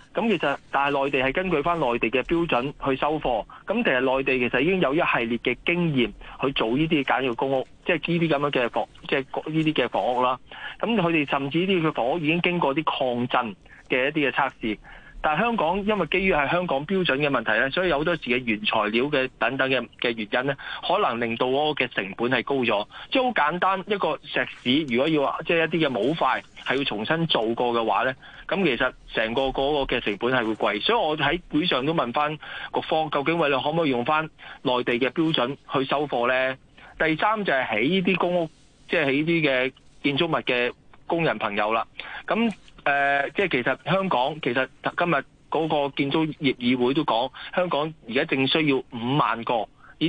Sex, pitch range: male, 125-165 Hz